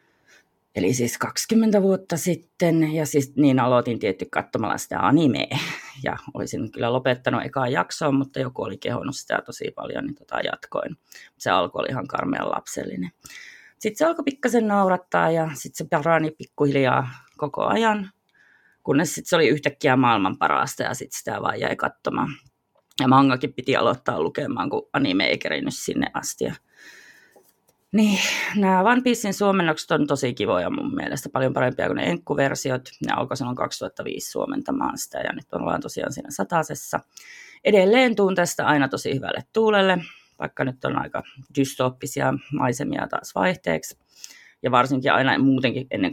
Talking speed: 150 wpm